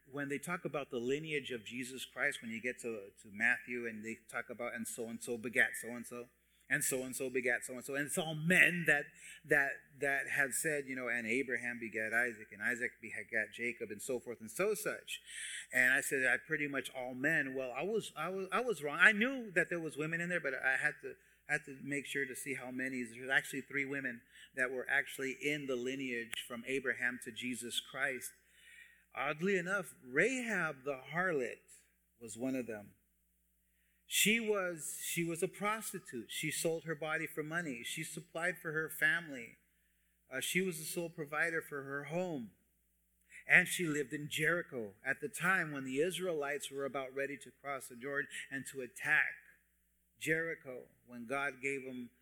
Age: 30-49